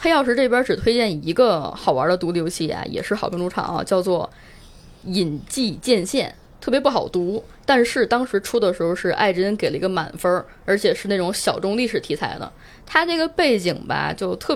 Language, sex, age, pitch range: Chinese, female, 20-39, 175-240 Hz